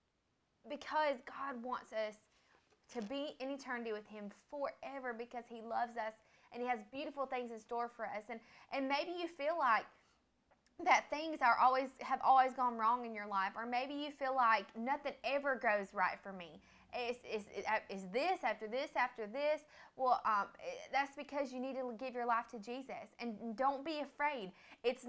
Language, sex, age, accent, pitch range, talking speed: English, female, 20-39, American, 220-275 Hz, 185 wpm